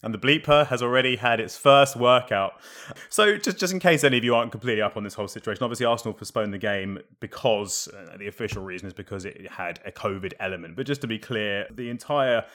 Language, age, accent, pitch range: English, 20-39, British, 100-115 Hz